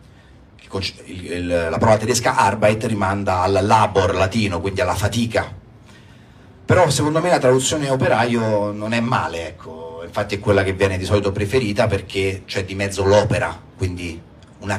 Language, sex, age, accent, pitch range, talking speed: Italian, male, 40-59, native, 100-125 Hz, 145 wpm